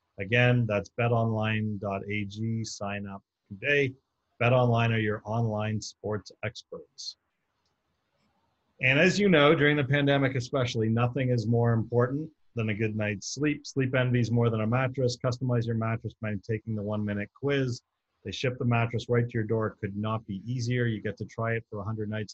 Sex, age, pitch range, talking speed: male, 40-59, 105-125 Hz, 175 wpm